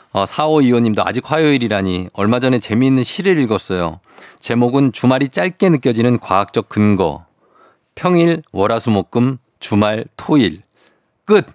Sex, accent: male, native